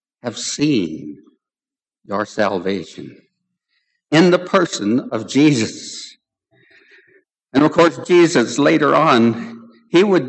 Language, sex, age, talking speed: English, male, 60-79, 100 wpm